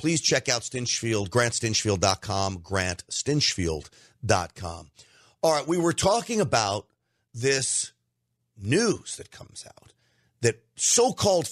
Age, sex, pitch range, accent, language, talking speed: 40-59, male, 110-145 Hz, American, English, 100 wpm